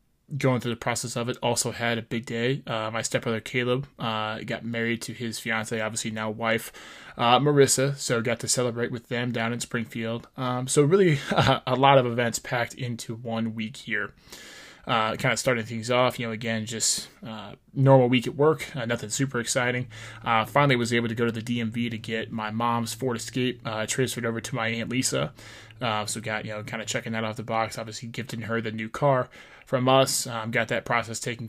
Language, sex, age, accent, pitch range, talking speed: English, male, 20-39, American, 115-130 Hz, 215 wpm